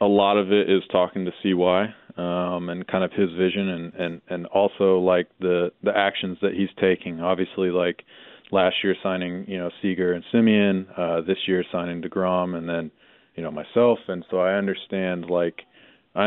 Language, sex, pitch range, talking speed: English, male, 85-95 Hz, 190 wpm